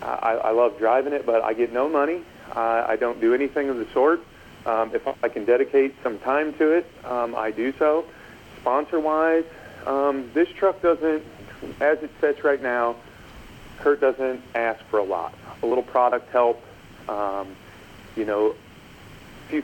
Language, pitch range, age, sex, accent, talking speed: English, 110-140 Hz, 40-59, male, American, 170 wpm